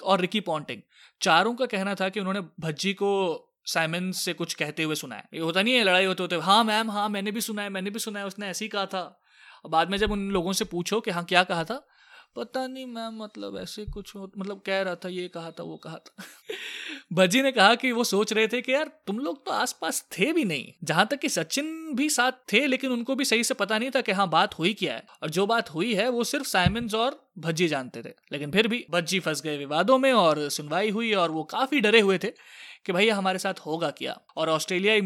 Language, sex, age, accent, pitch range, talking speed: Hindi, male, 20-39, native, 175-230 Hz, 160 wpm